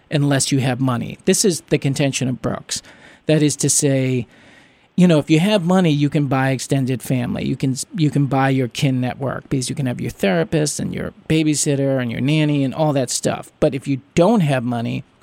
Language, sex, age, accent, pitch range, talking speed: English, male, 40-59, American, 130-155 Hz, 215 wpm